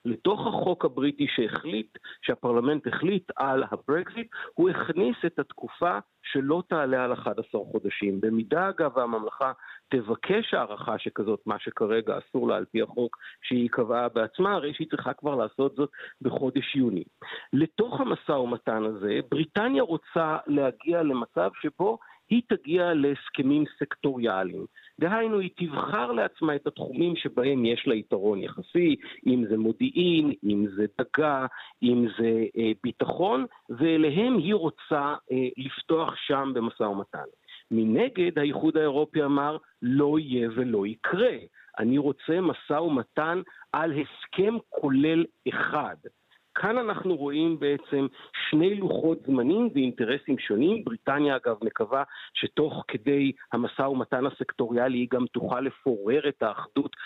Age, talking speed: 50-69, 130 wpm